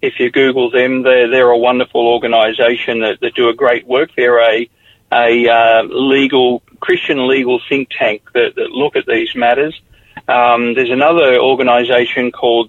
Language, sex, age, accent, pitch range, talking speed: English, male, 40-59, Australian, 120-135 Hz, 165 wpm